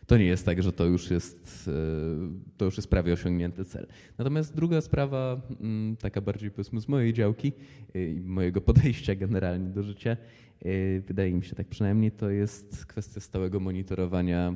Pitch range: 95-110 Hz